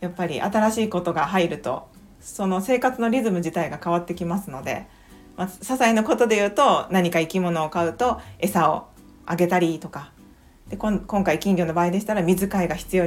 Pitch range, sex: 165-215 Hz, female